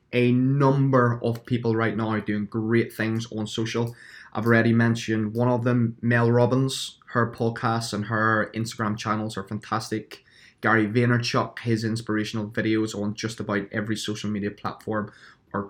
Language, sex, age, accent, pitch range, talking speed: English, male, 20-39, British, 105-120 Hz, 155 wpm